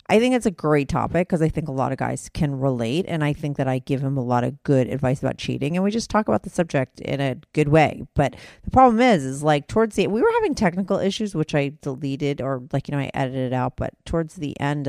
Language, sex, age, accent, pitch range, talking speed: English, female, 40-59, American, 140-180 Hz, 275 wpm